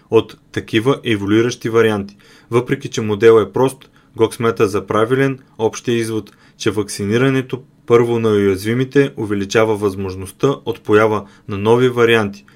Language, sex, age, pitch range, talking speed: Bulgarian, male, 20-39, 105-130 Hz, 130 wpm